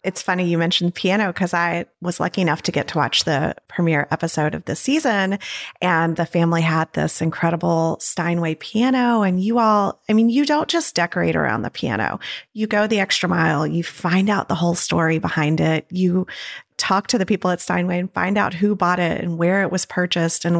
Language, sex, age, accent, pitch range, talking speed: English, female, 30-49, American, 170-215 Hz, 210 wpm